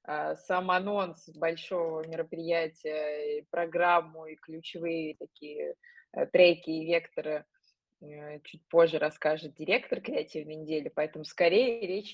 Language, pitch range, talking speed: Russian, 155-185 Hz, 100 wpm